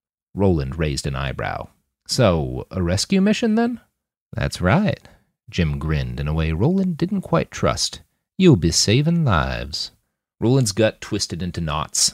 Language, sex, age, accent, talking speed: English, male, 40-59, American, 145 wpm